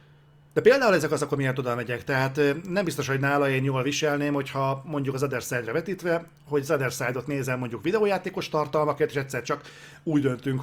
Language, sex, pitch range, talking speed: Hungarian, male, 130-150 Hz, 190 wpm